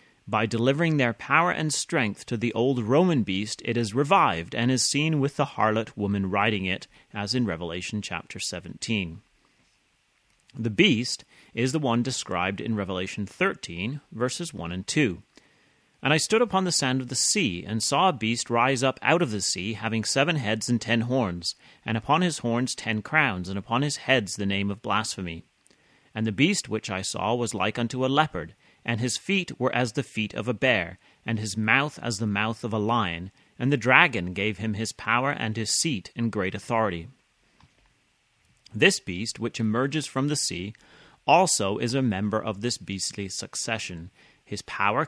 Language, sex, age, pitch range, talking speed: English, male, 30-49, 100-130 Hz, 185 wpm